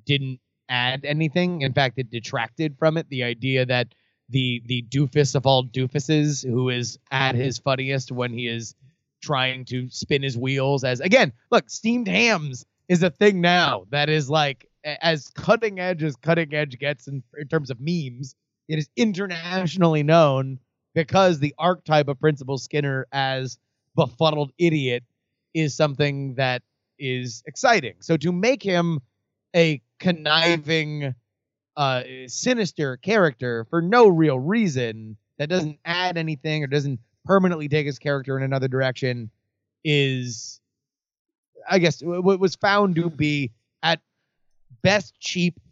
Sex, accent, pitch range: male, American, 125-160 Hz